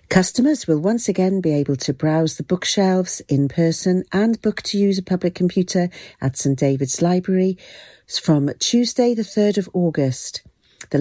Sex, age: female, 50-69